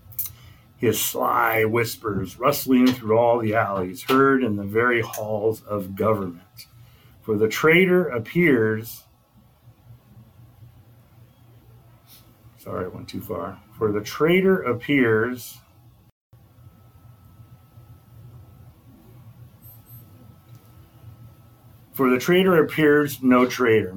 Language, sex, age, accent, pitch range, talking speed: English, male, 40-59, American, 110-125 Hz, 85 wpm